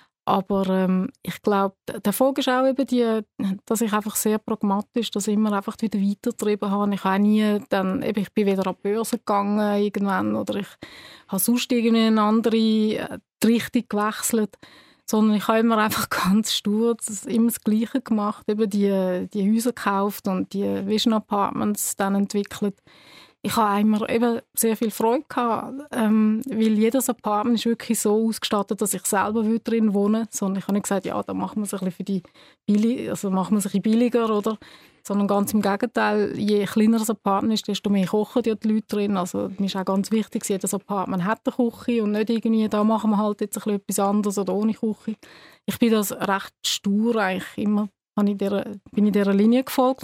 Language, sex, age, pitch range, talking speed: German, female, 20-39, 200-225 Hz, 185 wpm